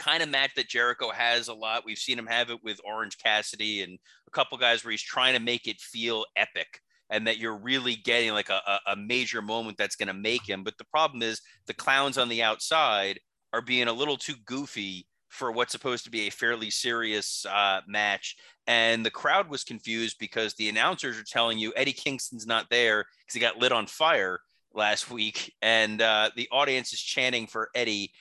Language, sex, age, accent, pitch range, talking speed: English, male, 30-49, American, 110-130 Hz, 210 wpm